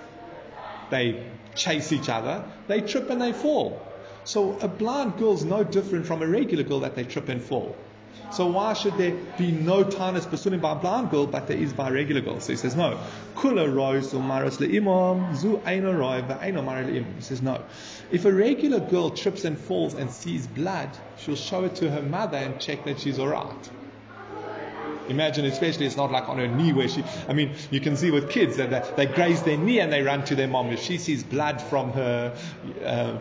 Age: 30-49